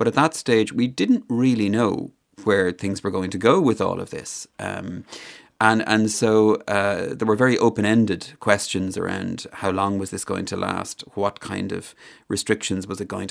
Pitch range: 100-120 Hz